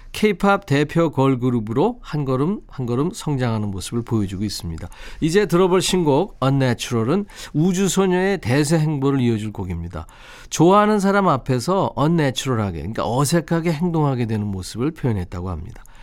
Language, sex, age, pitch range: Korean, male, 40-59, 120-175 Hz